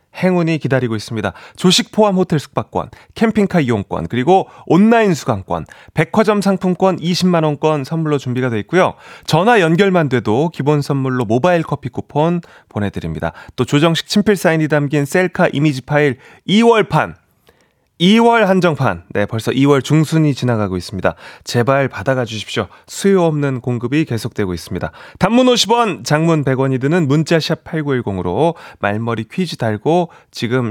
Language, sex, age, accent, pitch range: Korean, male, 30-49, native, 120-185 Hz